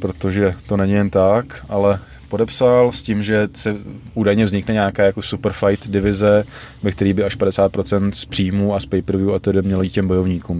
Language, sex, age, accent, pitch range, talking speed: Czech, male, 20-39, native, 95-105 Hz, 185 wpm